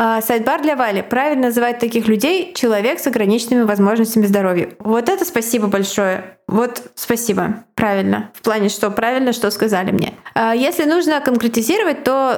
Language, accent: Russian, native